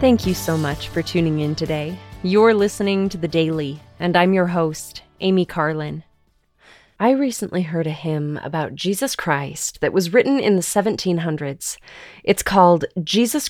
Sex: female